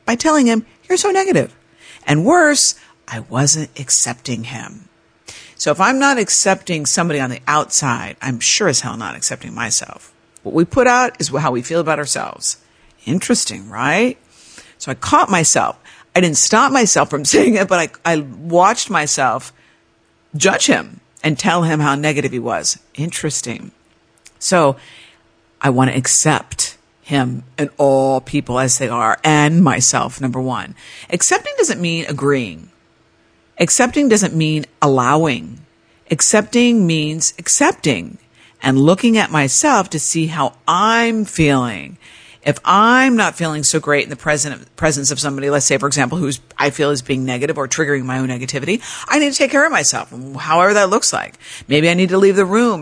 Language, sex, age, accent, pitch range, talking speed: English, female, 50-69, American, 135-190 Hz, 165 wpm